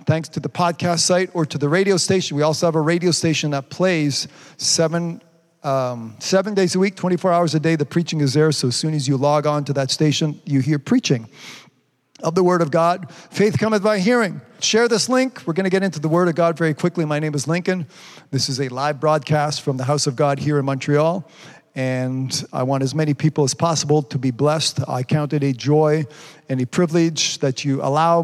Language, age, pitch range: English, 50-69, 145-175 Hz